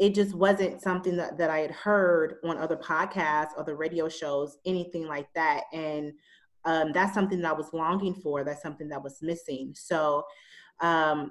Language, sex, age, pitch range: English, female, 30-49, 155-185 Hz